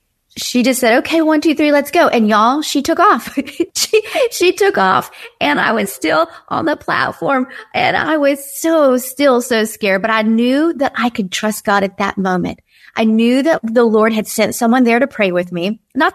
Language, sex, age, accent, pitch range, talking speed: English, female, 40-59, American, 195-255 Hz, 210 wpm